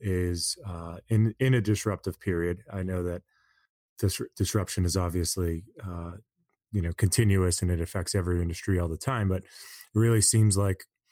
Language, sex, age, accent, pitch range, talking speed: English, male, 30-49, American, 90-105 Hz, 165 wpm